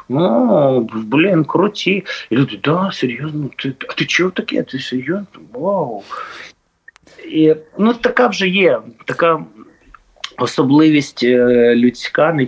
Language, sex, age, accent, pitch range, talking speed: Ukrainian, male, 30-49, native, 120-160 Hz, 115 wpm